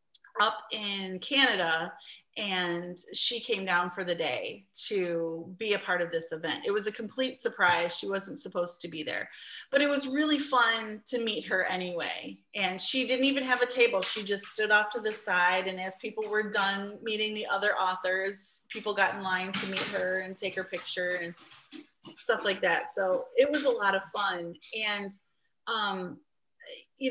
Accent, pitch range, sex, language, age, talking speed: American, 190-255 Hz, female, English, 30-49, 190 wpm